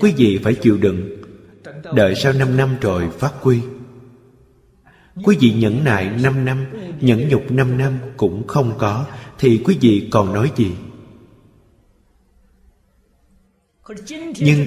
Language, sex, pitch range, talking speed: Vietnamese, male, 95-125 Hz, 130 wpm